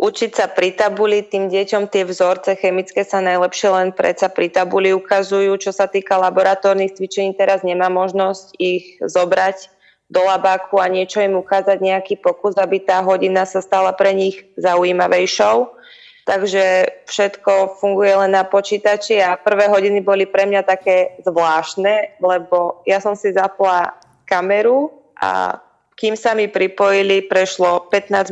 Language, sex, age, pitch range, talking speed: Slovak, female, 20-39, 190-210 Hz, 150 wpm